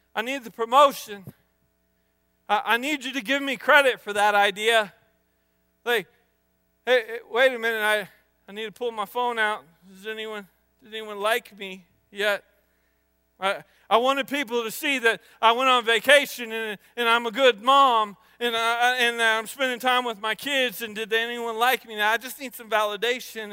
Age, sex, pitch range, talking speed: 40-59, male, 205-255 Hz, 185 wpm